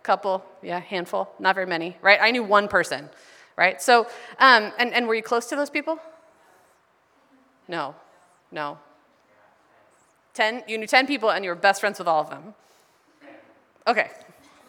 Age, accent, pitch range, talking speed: 30-49, American, 180-245 Hz, 160 wpm